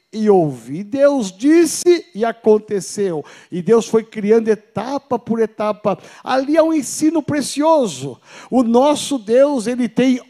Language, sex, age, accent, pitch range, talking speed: Portuguese, male, 50-69, Brazilian, 225-285 Hz, 135 wpm